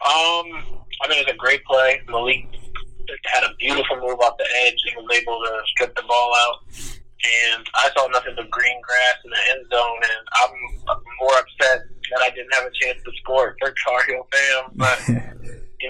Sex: male